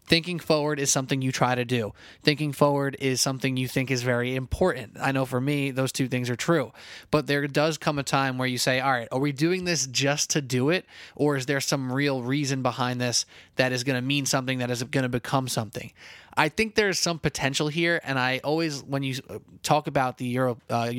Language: English